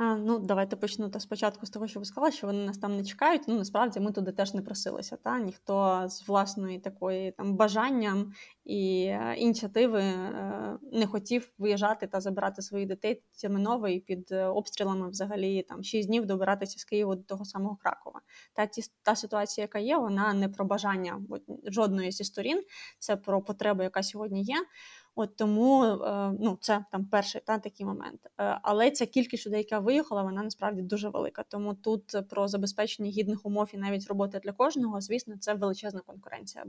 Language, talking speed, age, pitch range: Ukrainian, 170 wpm, 20-39, 195-215 Hz